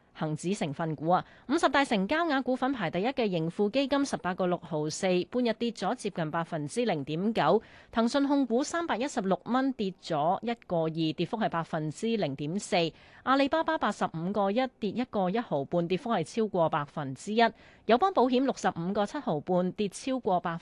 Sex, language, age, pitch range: female, Chinese, 30-49, 170-235 Hz